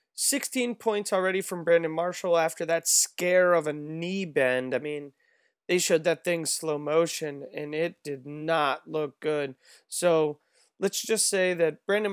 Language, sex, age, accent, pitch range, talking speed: English, male, 20-39, American, 150-185 Hz, 165 wpm